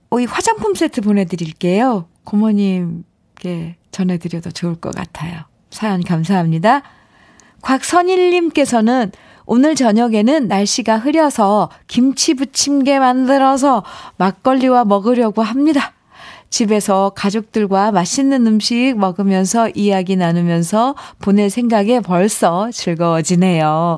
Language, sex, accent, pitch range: Korean, female, native, 185-255 Hz